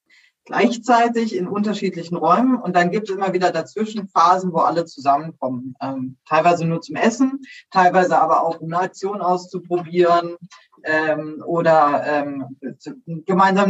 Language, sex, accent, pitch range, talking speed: German, female, German, 160-190 Hz, 135 wpm